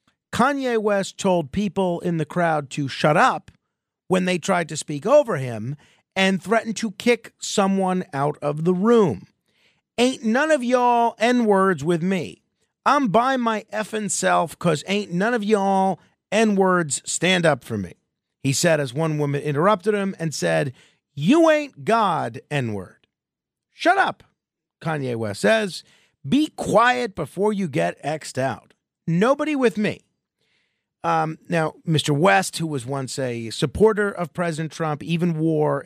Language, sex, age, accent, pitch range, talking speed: English, male, 40-59, American, 150-220 Hz, 150 wpm